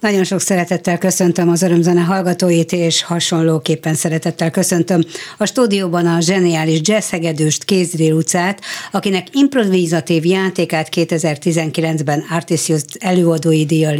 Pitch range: 160-190 Hz